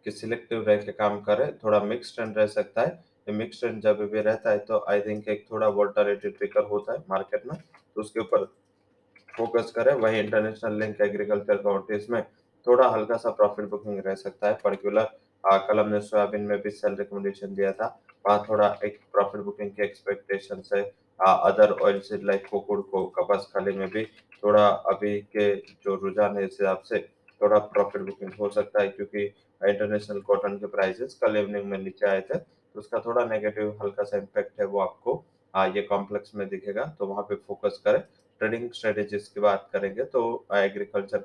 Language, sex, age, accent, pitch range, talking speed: English, male, 20-39, Indian, 100-115 Hz, 140 wpm